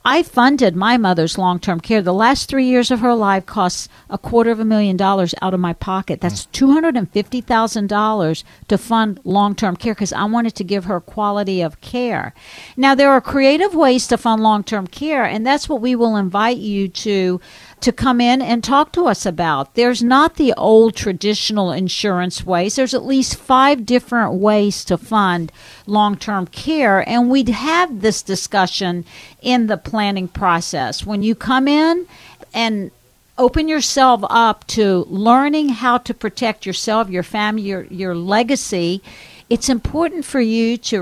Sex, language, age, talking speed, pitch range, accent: female, English, 50-69, 165 wpm, 190-245 Hz, American